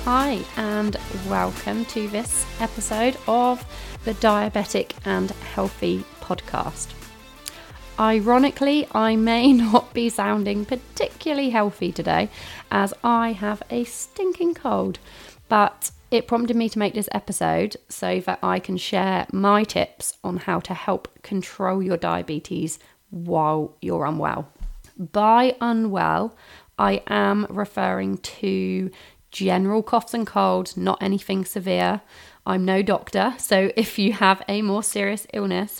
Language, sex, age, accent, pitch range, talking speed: English, female, 30-49, British, 185-230 Hz, 125 wpm